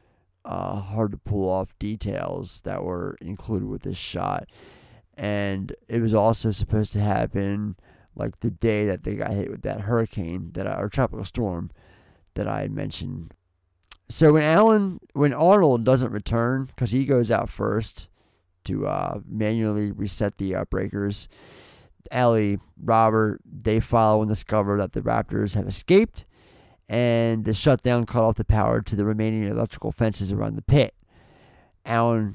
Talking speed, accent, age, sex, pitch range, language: 155 wpm, American, 30-49, male, 100-115 Hz, English